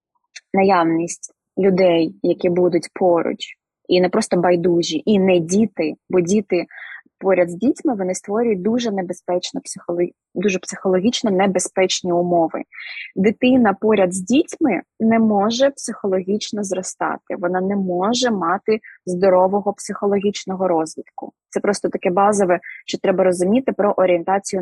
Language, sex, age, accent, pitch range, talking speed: Ukrainian, female, 20-39, native, 185-240 Hz, 120 wpm